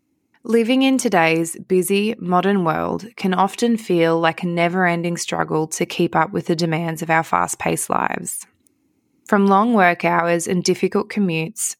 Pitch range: 165-210 Hz